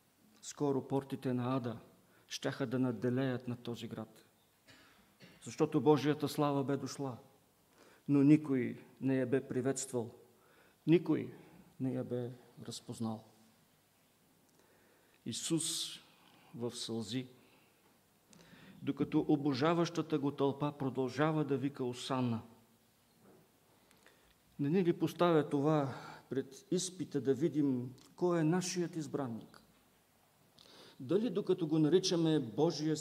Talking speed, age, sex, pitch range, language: 100 wpm, 50-69, male, 130-155 Hz, English